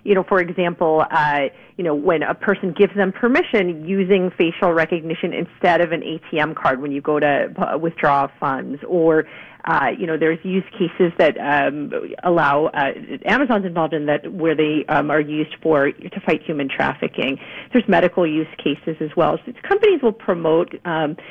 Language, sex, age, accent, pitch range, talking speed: English, female, 40-59, American, 160-215 Hz, 180 wpm